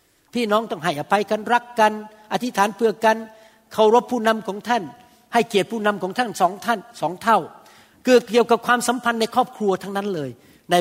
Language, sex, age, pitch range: Thai, male, 60-79, 175-230 Hz